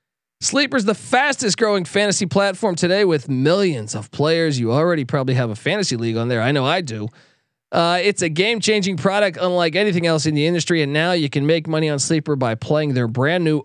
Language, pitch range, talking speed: English, 150-205 Hz, 215 wpm